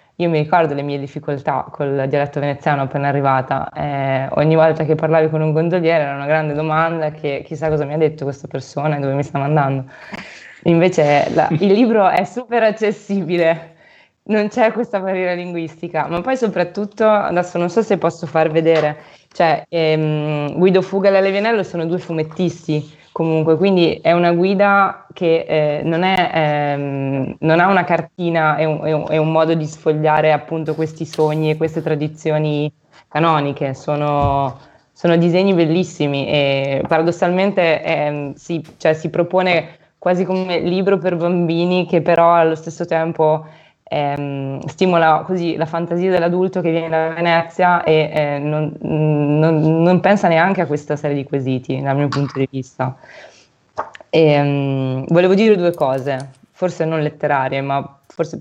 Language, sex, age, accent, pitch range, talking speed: Italian, female, 20-39, native, 150-175 Hz, 155 wpm